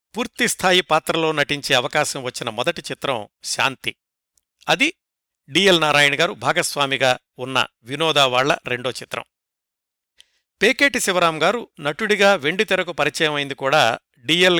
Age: 60-79